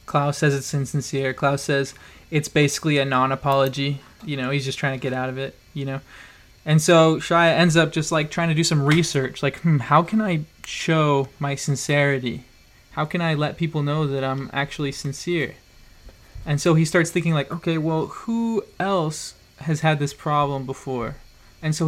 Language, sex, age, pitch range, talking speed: English, male, 20-39, 140-160 Hz, 190 wpm